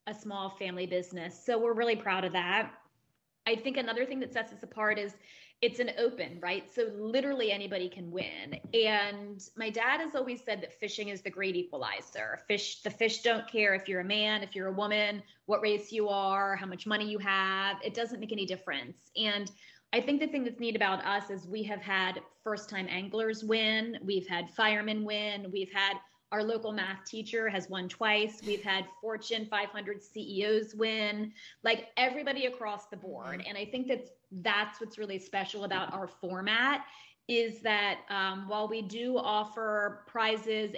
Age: 20-39